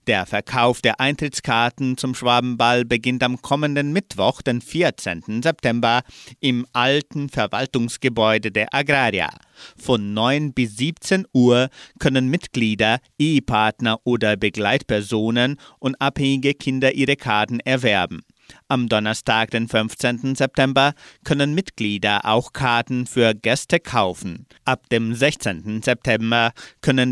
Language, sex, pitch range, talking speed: German, male, 110-135 Hz, 115 wpm